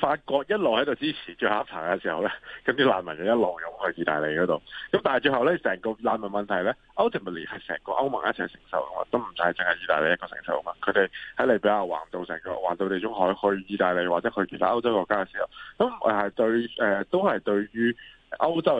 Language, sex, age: Chinese, male, 20-39